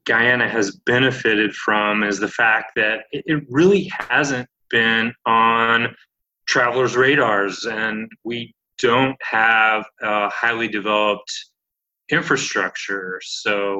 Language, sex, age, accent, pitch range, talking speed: English, male, 30-49, American, 110-140 Hz, 105 wpm